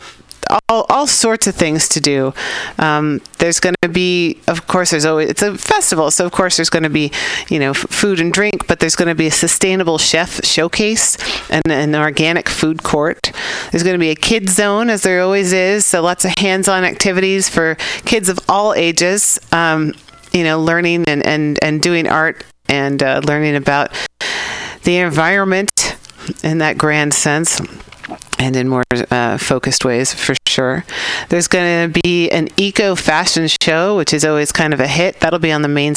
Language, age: English, 40-59